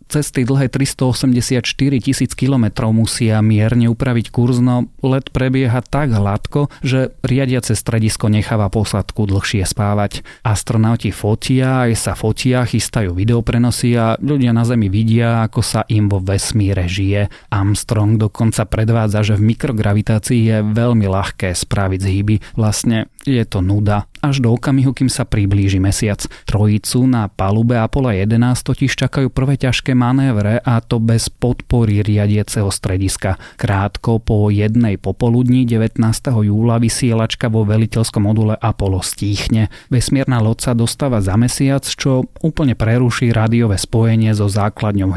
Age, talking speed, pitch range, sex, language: 30-49, 135 wpm, 105-125 Hz, male, Slovak